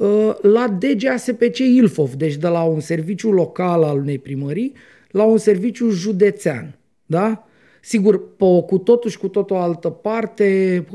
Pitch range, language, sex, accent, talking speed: 170-235 Hz, Romanian, male, native, 160 wpm